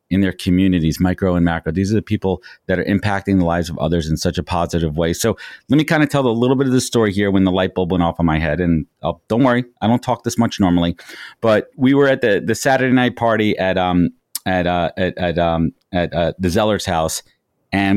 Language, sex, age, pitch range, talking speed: English, male, 30-49, 90-115 Hz, 255 wpm